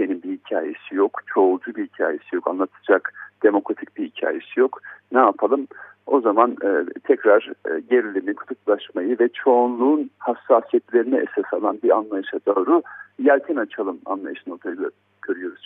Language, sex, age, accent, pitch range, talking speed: Turkish, male, 60-79, native, 280-410 Hz, 125 wpm